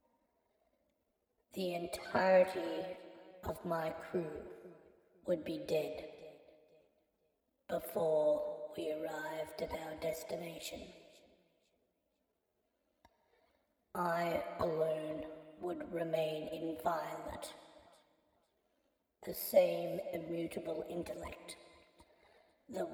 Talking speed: 65 wpm